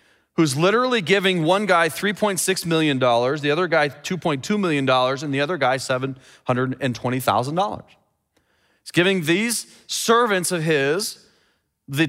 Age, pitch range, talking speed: 30-49, 150-220 Hz, 175 wpm